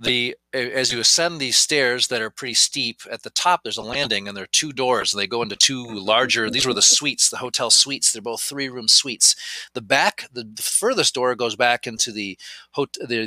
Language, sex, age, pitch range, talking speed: English, male, 40-59, 110-130 Hz, 225 wpm